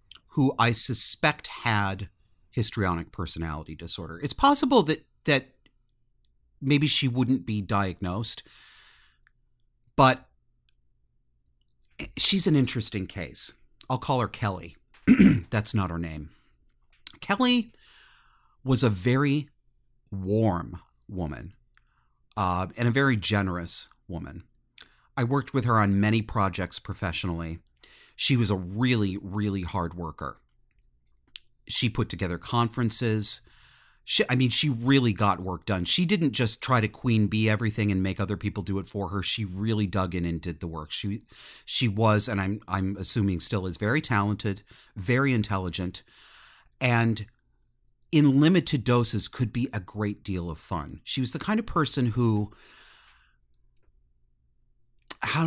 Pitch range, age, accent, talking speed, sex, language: 90-120 Hz, 40-59, American, 135 wpm, male, English